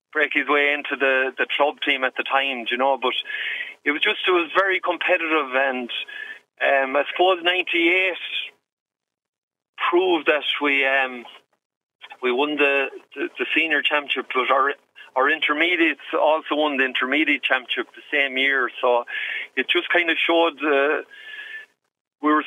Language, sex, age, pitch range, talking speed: English, male, 40-59, 130-165 Hz, 155 wpm